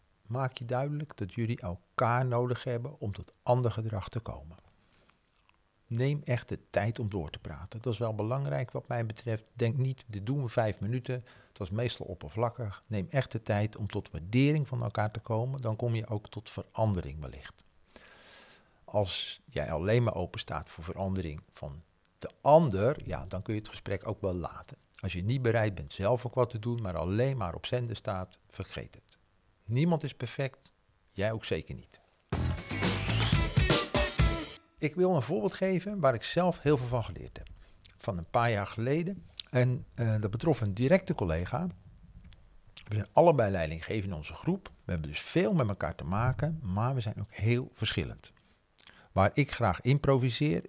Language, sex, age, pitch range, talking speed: Dutch, male, 50-69, 95-125 Hz, 180 wpm